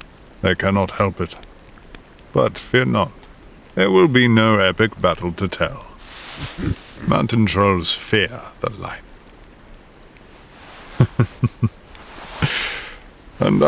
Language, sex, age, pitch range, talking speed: English, male, 50-69, 90-110 Hz, 90 wpm